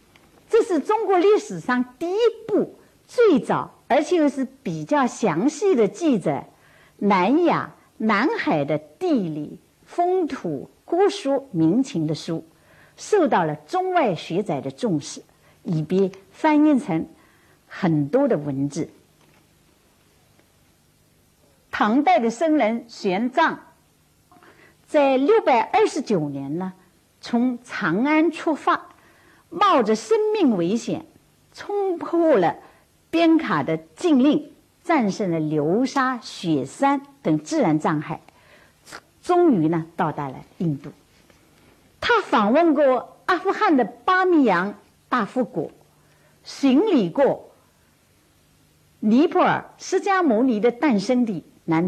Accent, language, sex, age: American, Chinese, female, 50-69